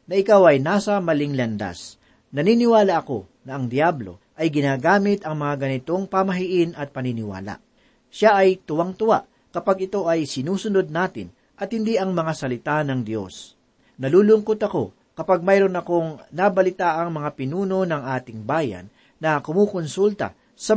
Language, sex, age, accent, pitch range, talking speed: Filipino, male, 40-59, native, 135-190 Hz, 140 wpm